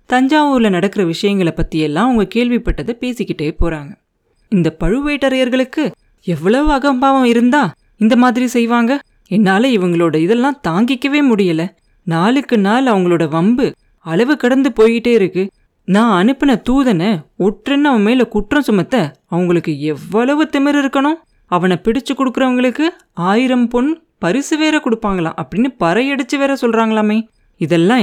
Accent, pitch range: native, 180-250 Hz